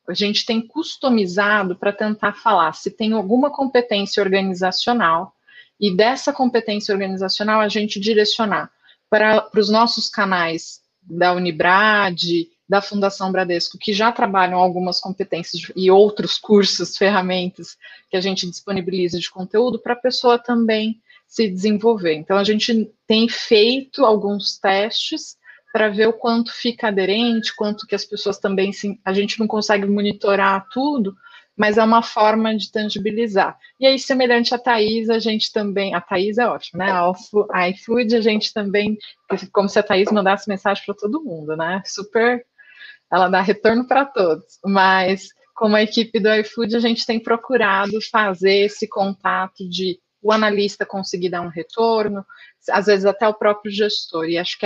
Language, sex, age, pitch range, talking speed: Portuguese, female, 30-49, 190-225 Hz, 155 wpm